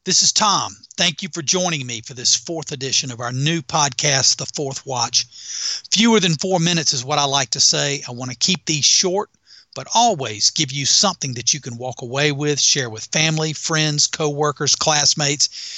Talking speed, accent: 200 wpm, American